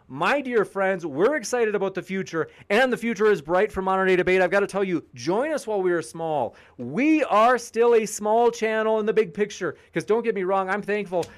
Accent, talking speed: American, 235 wpm